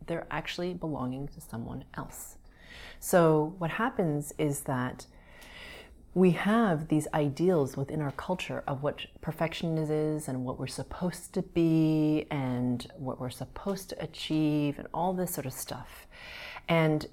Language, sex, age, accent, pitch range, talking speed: English, female, 30-49, American, 140-190 Hz, 145 wpm